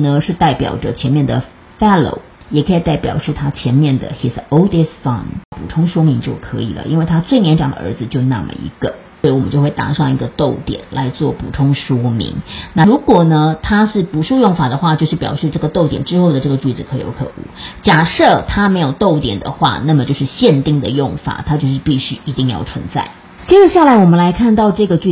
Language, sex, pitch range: Chinese, female, 135-180 Hz